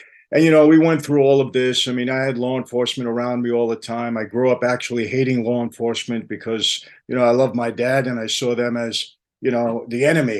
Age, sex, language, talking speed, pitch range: 50-69, male, English, 250 wpm, 120-140 Hz